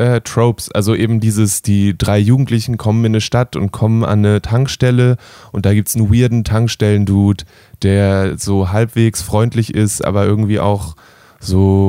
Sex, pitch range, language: male, 100-115 Hz, German